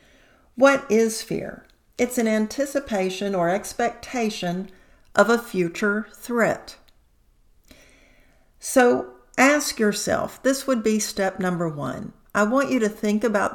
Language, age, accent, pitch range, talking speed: English, 60-79, American, 185-235 Hz, 120 wpm